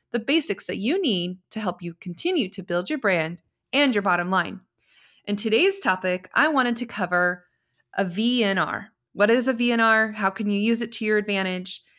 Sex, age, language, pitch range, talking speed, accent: female, 30-49, English, 190-245 Hz, 190 wpm, American